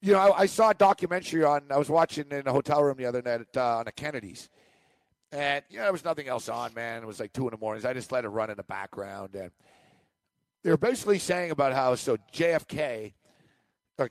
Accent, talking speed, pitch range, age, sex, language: American, 240 wpm, 120-170 Hz, 50-69, male, English